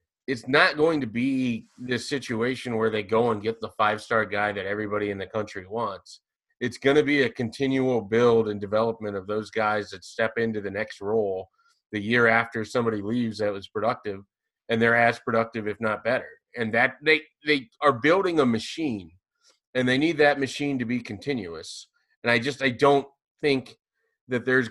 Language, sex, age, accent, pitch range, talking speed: English, male, 30-49, American, 110-140 Hz, 190 wpm